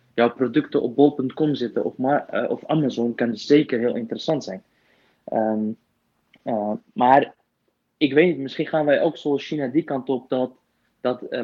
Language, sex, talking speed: Dutch, male, 180 wpm